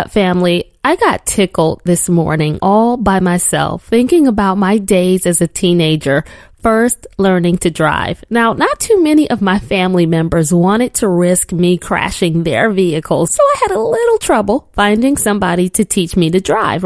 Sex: female